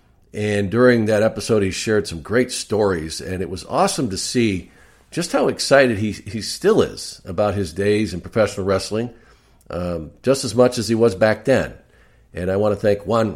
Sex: male